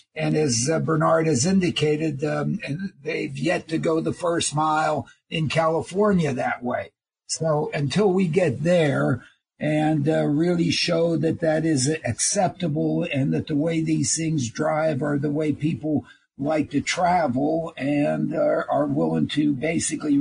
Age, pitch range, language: 60-79, 140-160 Hz, English